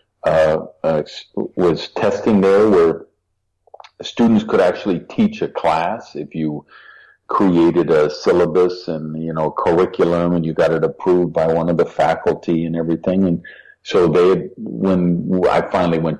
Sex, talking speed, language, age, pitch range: male, 150 wpm, English, 50-69, 80-95 Hz